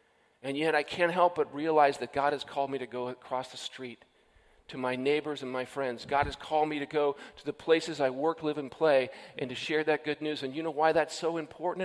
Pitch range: 145-185 Hz